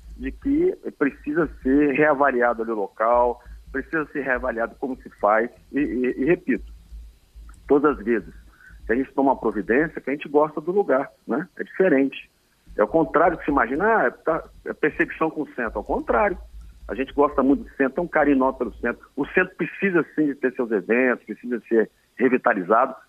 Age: 50-69